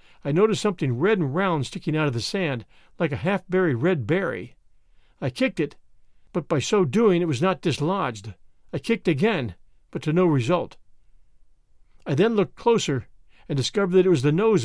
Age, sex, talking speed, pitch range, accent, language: 50-69, male, 185 wpm, 140-195 Hz, American, English